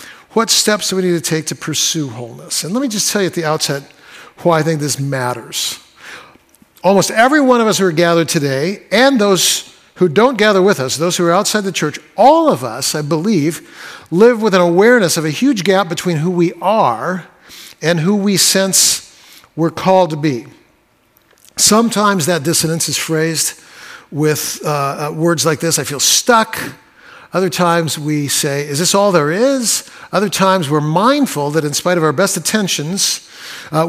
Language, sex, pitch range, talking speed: English, male, 160-205 Hz, 185 wpm